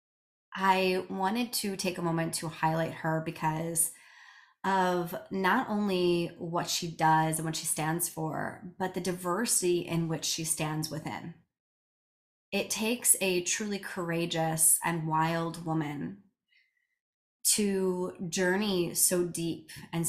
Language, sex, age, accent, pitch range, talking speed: English, female, 20-39, American, 165-190 Hz, 125 wpm